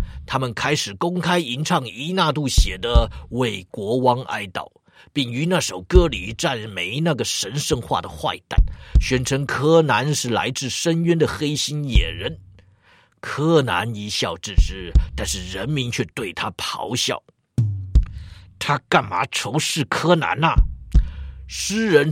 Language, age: Chinese, 50-69